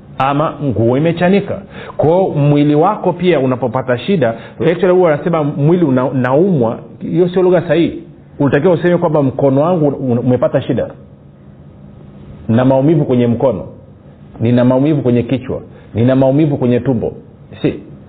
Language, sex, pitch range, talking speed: Swahili, male, 120-155 Hz, 130 wpm